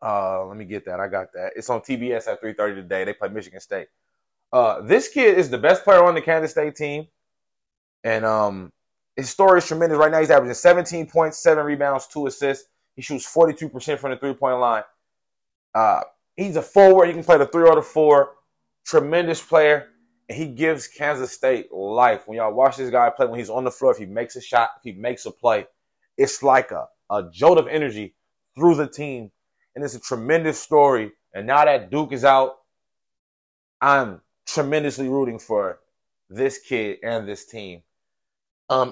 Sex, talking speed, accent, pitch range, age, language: male, 190 wpm, American, 120-155 Hz, 20-39, English